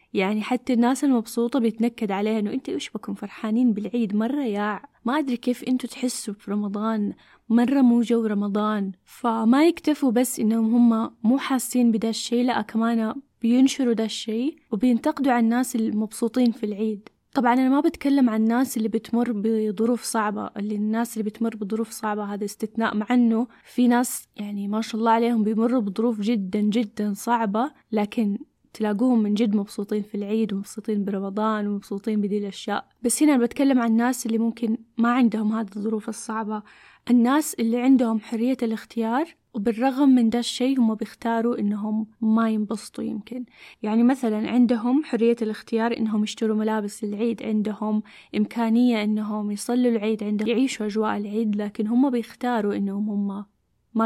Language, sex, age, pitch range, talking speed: Arabic, female, 10-29, 215-245 Hz, 150 wpm